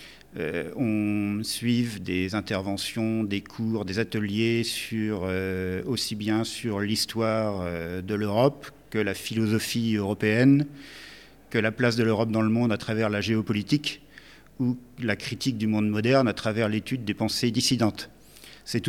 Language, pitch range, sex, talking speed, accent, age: French, 100-120 Hz, male, 150 wpm, French, 50-69